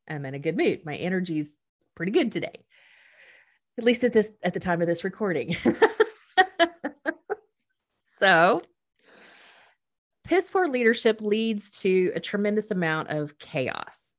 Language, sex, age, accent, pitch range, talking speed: English, female, 30-49, American, 180-260 Hz, 130 wpm